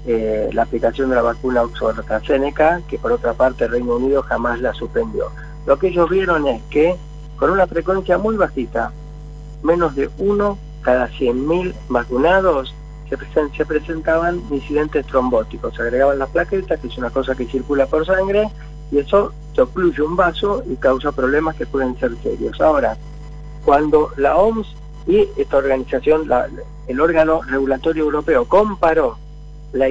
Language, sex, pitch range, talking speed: Spanish, male, 130-160 Hz, 165 wpm